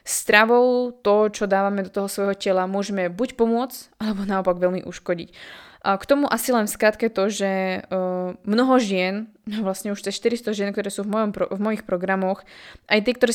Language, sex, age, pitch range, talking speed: Slovak, female, 20-39, 195-220 Hz, 180 wpm